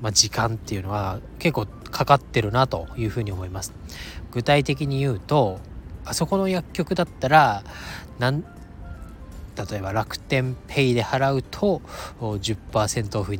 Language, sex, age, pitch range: Japanese, male, 20-39, 95-145 Hz